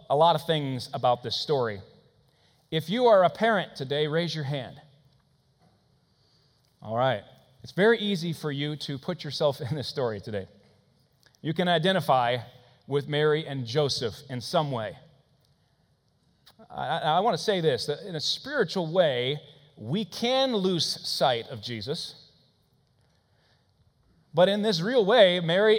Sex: male